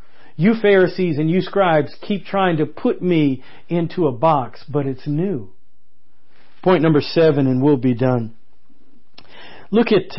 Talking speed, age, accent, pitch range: 145 wpm, 50-69, American, 140-185 Hz